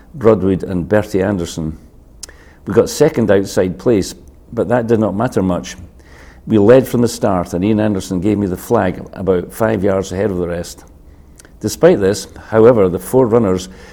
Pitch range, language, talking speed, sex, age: 80-100 Hz, English, 170 wpm, male, 50-69